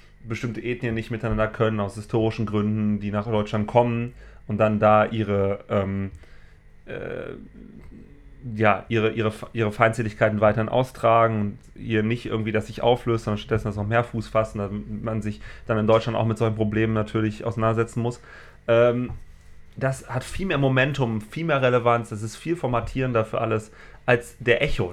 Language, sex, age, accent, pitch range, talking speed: German, male, 30-49, German, 105-120 Hz, 170 wpm